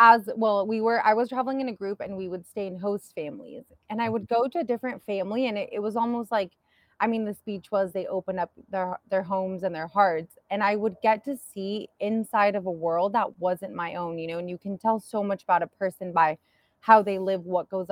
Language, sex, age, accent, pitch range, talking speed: English, female, 20-39, American, 175-215 Hz, 255 wpm